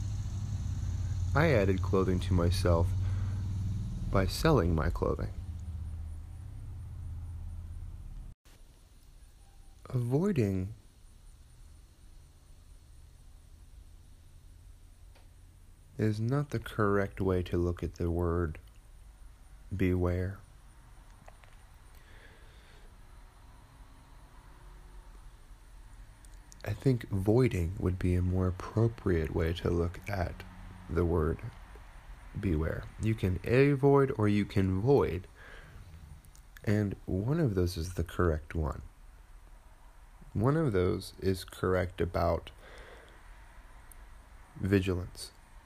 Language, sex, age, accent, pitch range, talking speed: English, male, 30-49, American, 85-100 Hz, 75 wpm